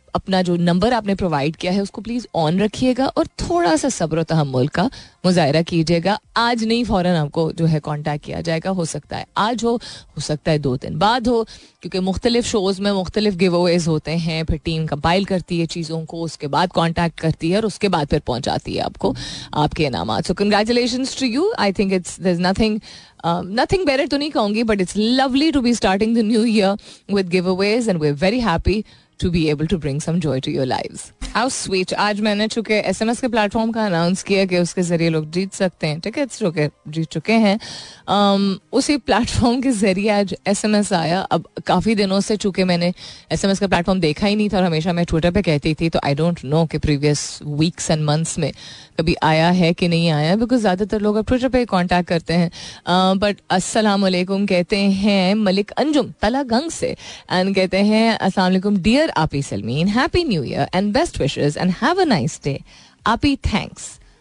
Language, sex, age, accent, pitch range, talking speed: Hindi, female, 30-49, native, 165-215 Hz, 205 wpm